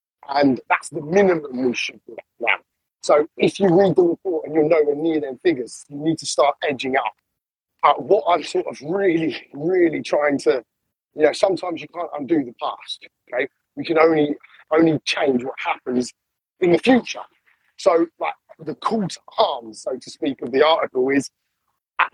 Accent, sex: British, male